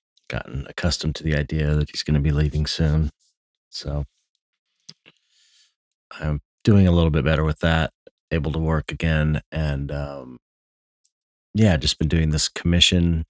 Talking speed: 145 wpm